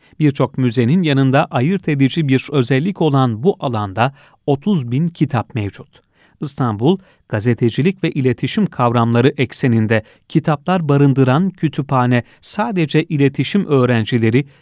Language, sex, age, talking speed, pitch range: Turkish, male, 40-59, 105 wpm, 125-160 Hz